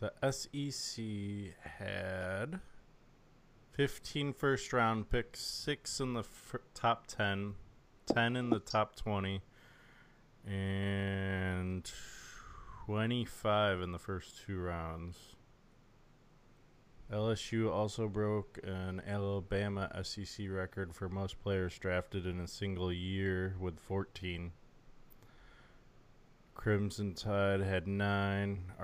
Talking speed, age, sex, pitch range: 90 wpm, 20-39, male, 95-115 Hz